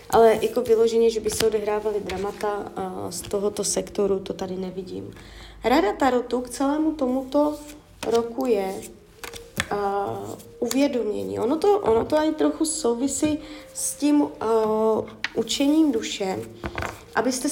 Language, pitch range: Czech, 205-280 Hz